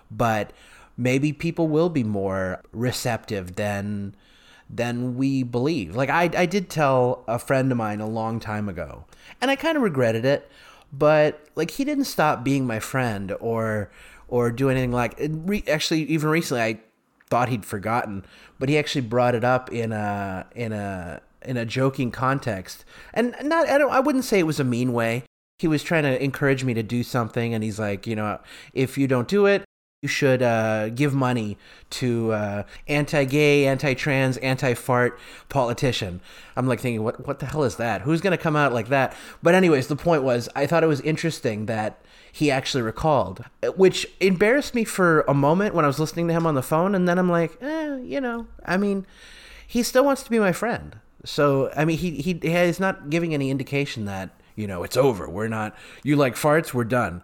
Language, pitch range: English, 115-165 Hz